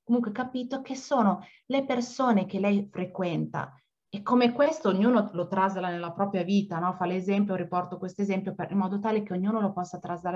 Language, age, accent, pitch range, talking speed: Italian, 30-49, native, 190-245 Hz, 185 wpm